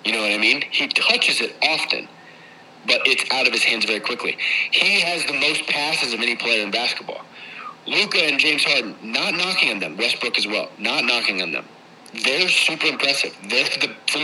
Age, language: 30-49, English